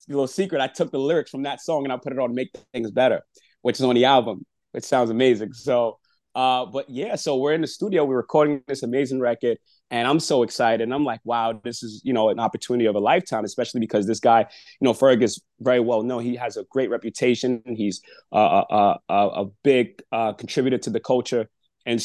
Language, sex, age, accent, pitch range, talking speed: English, male, 30-49, American, 120-155 Hz, 235 wpm